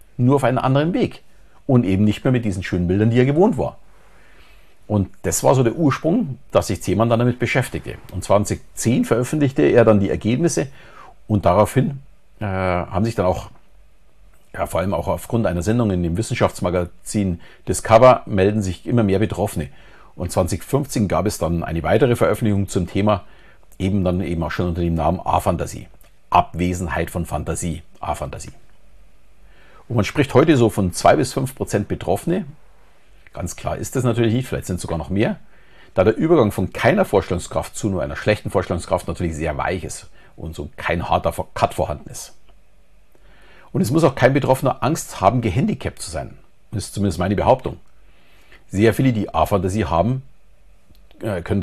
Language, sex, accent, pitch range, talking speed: German, male, German, 90-115 Hz, 170 wpm